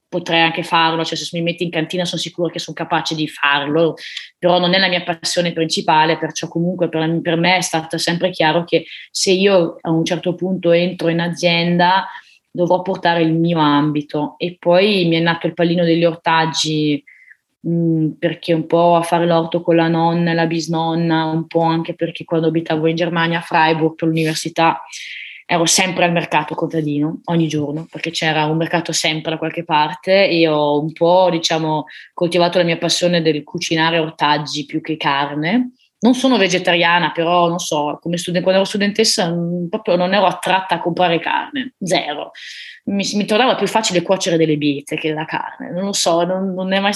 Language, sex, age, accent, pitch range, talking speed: Italian, female, 20-39, native, 160-180 Hz, 190 wpm